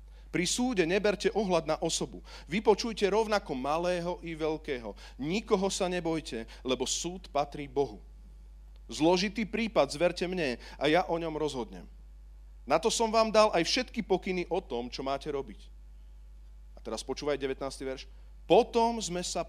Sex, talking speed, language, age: male, 150 wpm, Slovak, 40-59